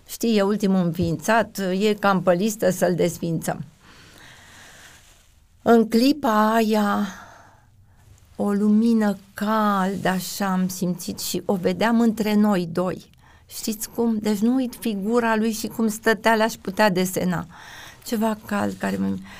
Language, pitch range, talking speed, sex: Romanian, 165-210 Hz, 125 wpm, female